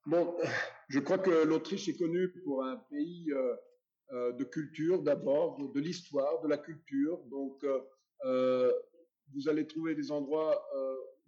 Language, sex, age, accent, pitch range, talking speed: French, male, 50-69, French, 135-205 Hz, 145 wpm